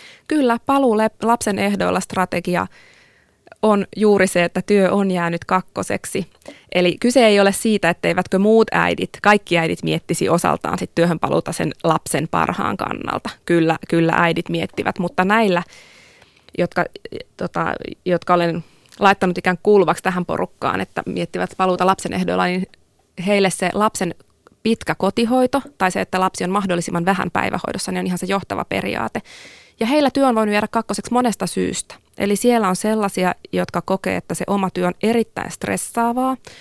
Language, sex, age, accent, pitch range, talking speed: Finnish, female, 20-39, native, 175-210 Hz, 155 wpm